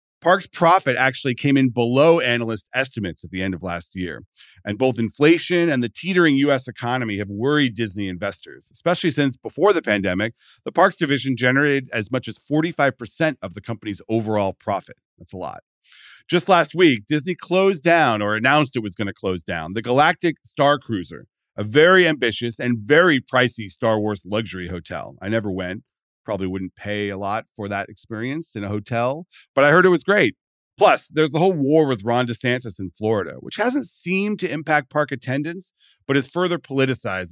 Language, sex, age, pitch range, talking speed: English, male, 40-59, 105-150 Hz, 185 wpm